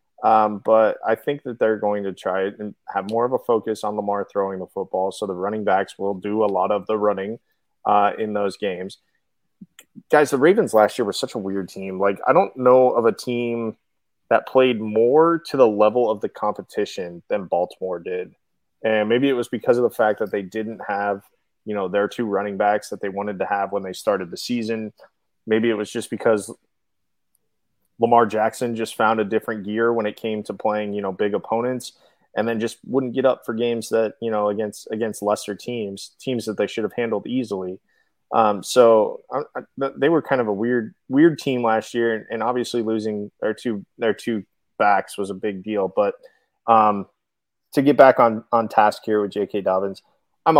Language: English